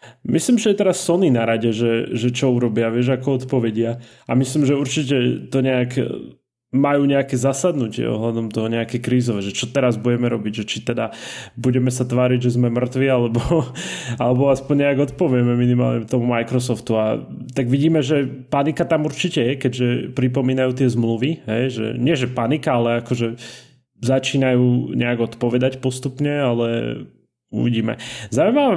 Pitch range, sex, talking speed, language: 120-135 Hz, male, 155 wpm, Slovak